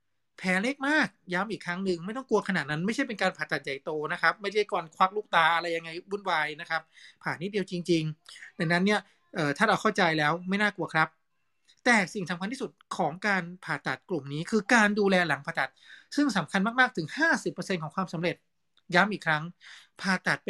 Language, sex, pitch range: Thai, male, 165-210 Hz